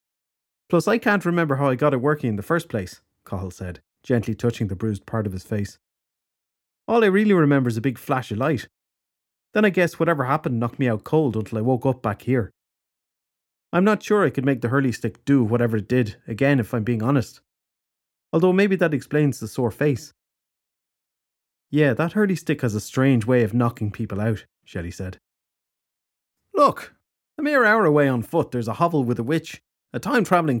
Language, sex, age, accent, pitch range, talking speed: English, male, 30-49, Irish, 110-145 Hz, 200 wpm